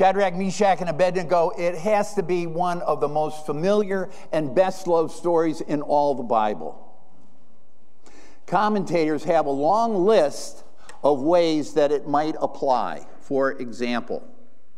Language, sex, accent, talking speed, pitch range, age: English, male, American, 140 wpm, 155-220 Hz, 50-69